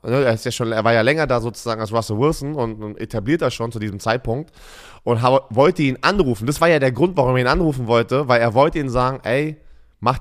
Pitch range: 120-160 Hz